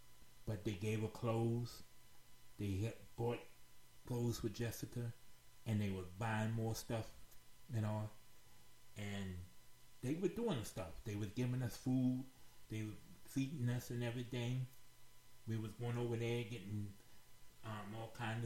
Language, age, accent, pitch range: English, 30-49, American, 110-125 Hz